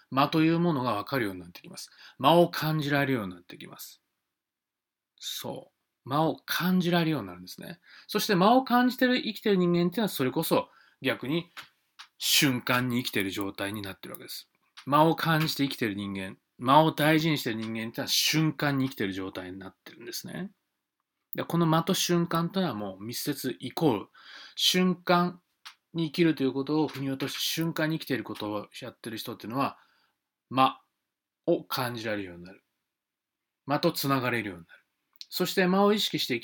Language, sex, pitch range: Japanese, male, 115-185 Hz